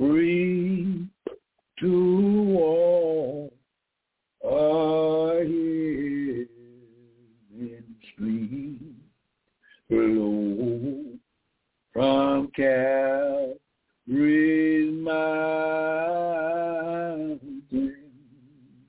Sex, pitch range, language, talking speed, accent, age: male, 140-205 Hz, English, 30 wpm, American, 60-79